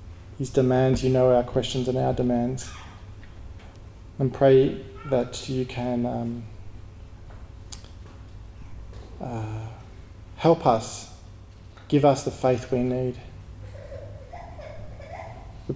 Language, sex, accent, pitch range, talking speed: English, male, Australian, 105-140 Hz, 95 wpm